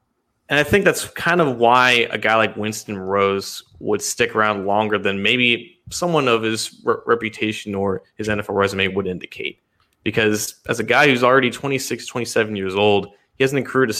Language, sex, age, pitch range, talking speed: English, male, 20-39, 105-130 Hz, 185 wpm